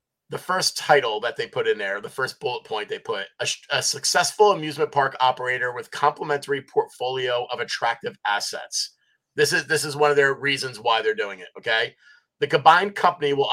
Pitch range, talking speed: 140-195 Hz, 190 wpm